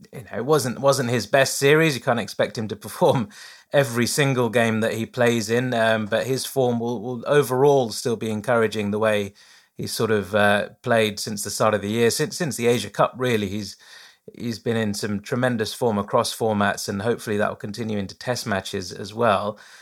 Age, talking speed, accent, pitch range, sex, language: 30-49, 210 wpm, British, 110-140 Hz, male, English